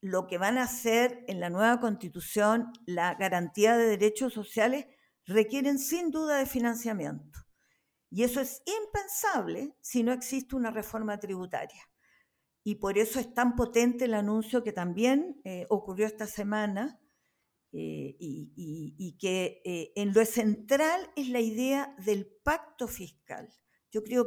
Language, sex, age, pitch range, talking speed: Spanish, female, 50-69, 210-255 Hz, 145 wpm